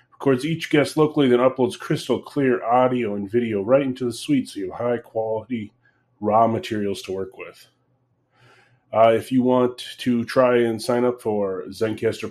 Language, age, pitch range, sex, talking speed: English, 30-49, 105-125 Hz, male, 175 wpm